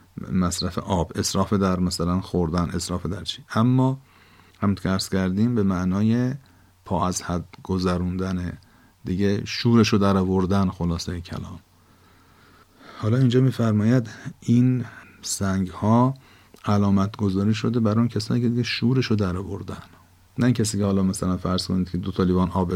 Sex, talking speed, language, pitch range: male, 140 wpm, Persian, 90-105 Hz